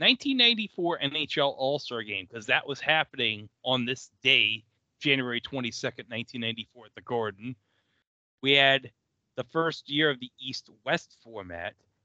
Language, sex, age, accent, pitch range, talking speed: English, male, 30-49, American, 110-145 Hz, 130 wpm